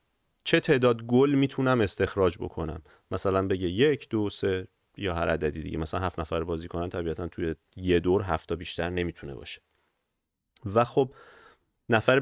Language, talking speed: Persian, 150 wpm